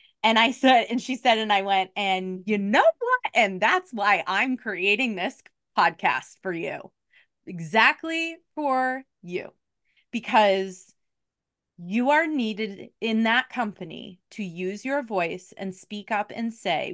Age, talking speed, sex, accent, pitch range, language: 20-39, 145 wpm, female, American, 195-255 Hz, English